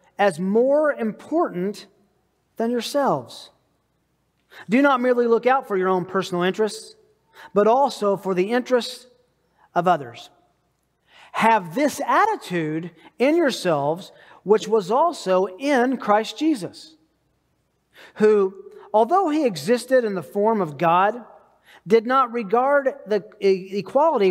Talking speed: 115 wpm